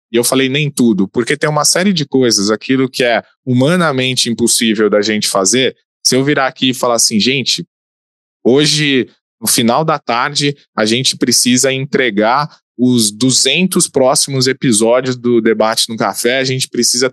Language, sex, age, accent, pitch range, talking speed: Portuguese, male, 20-39, Brazilian, 115-140 Hz, 165 wpm